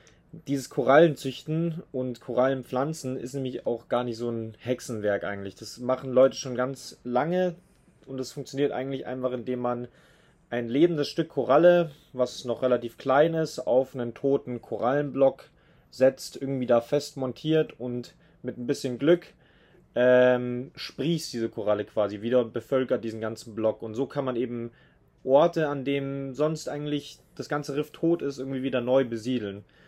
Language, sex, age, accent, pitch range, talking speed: German, male, 30-49, German, 120-145 Hz, 155 wpm